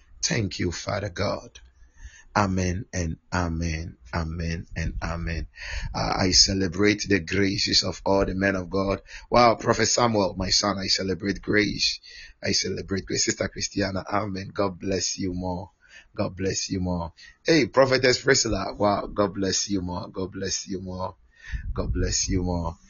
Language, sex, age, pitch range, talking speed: English, male, 30-49, 90-105 Hz, 155 wpm